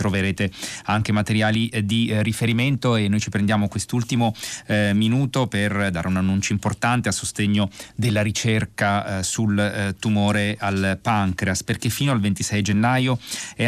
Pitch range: 95-110 Hz